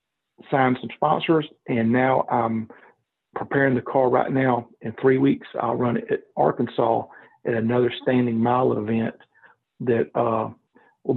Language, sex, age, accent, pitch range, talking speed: English, male, 50-69, American, 120-135 Hz, 145 wpm